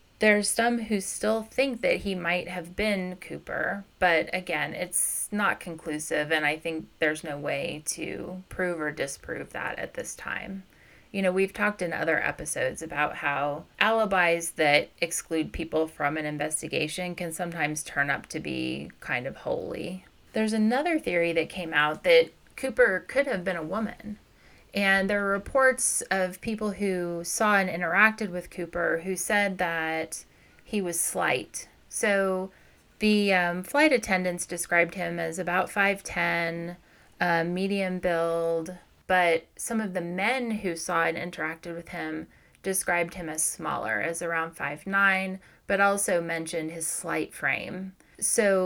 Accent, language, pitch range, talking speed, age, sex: American, English, 165-200 Hz, 150 wpm, 30-49, female